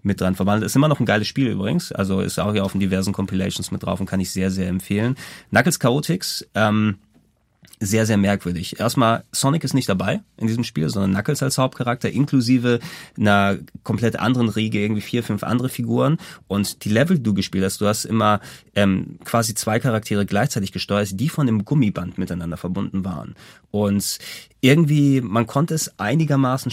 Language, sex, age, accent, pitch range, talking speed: German, male, 30-49, German, 100-120 Hz, 185 wpm